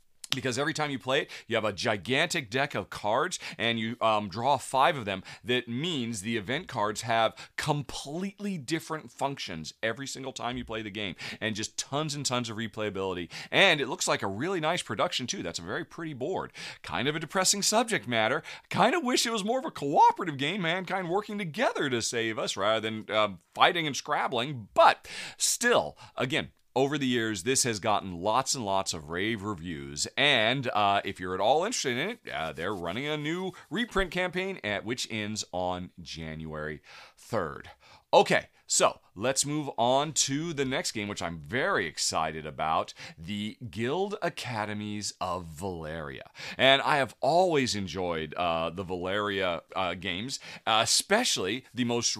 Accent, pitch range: American, 100-145 Hz